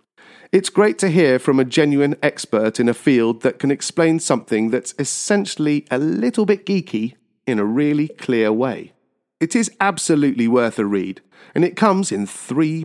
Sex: male